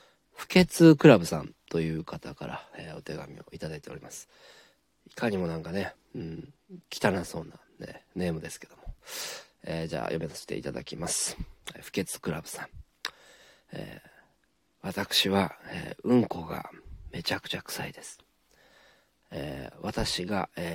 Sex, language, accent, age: male, Japanese, native, 40-59